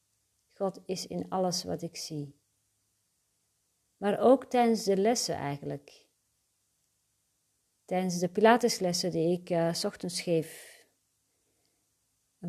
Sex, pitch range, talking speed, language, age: female, 150-210 Hz, 105 wpm, Dutch, 40-59